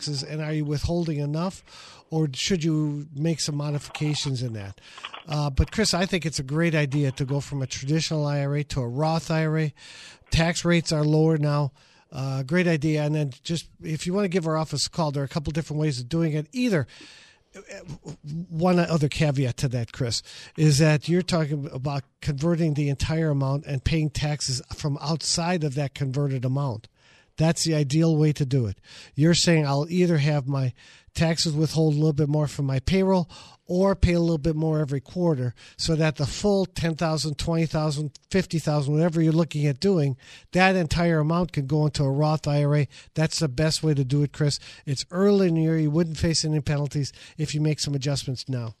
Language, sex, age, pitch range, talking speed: English, male, 50-69, 140-165 Hz, 200 wpm